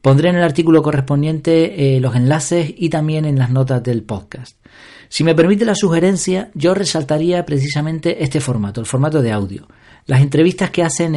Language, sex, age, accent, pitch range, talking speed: Spanish, male, 40-59, Argentinian, 135-165 Hz, 175 wpm